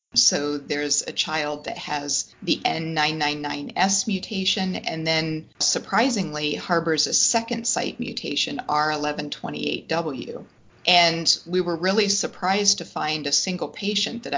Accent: American